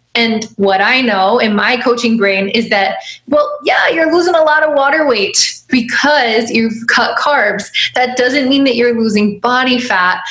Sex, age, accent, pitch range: female, 20-39, American, 205-255 Hz